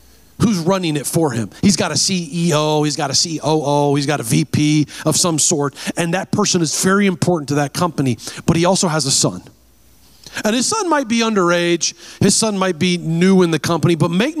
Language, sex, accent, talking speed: English, male, American, 210 wpm